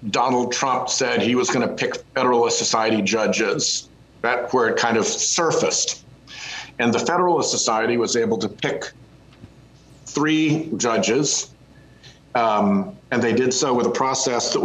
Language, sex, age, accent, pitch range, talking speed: English, male, 50-69, American, 110-135 Hz, 145 wpm